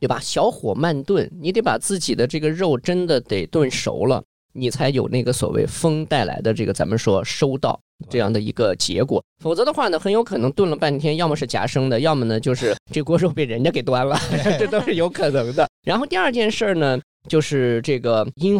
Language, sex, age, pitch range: Chinese, male, 20-39, 115-180 Hz